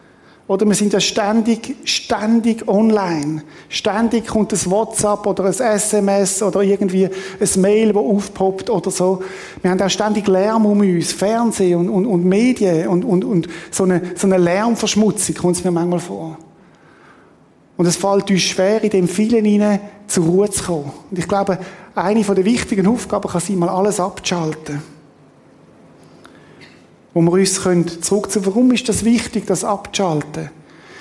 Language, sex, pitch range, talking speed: German, male, 175-205 Hz, 160 wpm